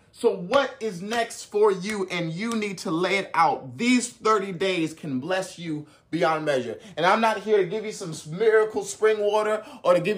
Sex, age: male, 30-49